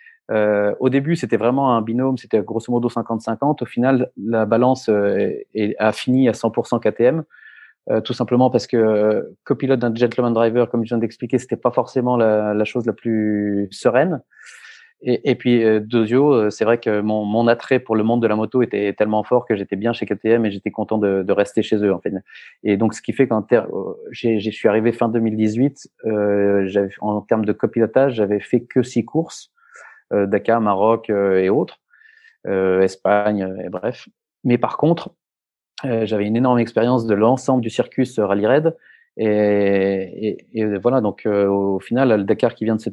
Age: 30-49